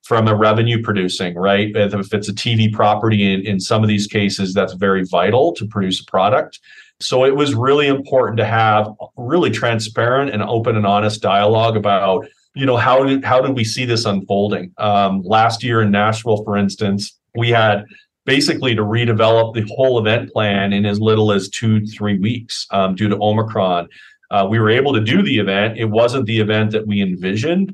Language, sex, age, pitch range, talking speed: English, male, 40-59, 100-115 Hz, 195 wpm